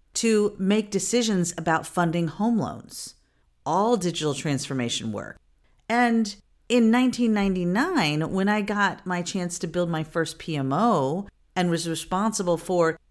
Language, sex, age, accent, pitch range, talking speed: English, female, 40-59, American, 160-235 Hz, 130 wpm